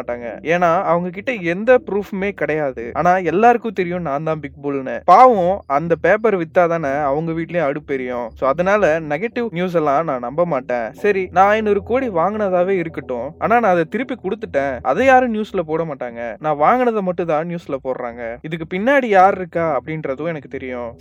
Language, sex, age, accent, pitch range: Tamil, male, 20-39, native, 145-190 Hz